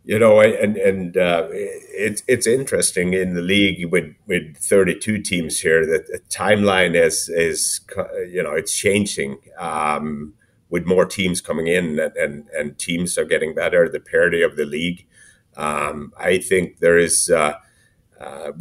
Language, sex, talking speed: English, male, 160 wpm